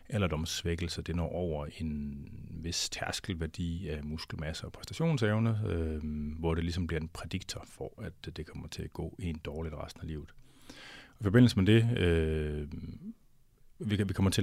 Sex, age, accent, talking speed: male, 30-49, native, 165 wpm